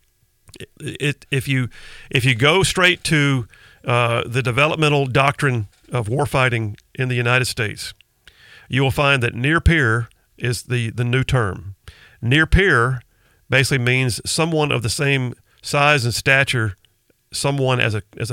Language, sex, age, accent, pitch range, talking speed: English, male, 50-69, American, 110-135 Hz, 140 wpm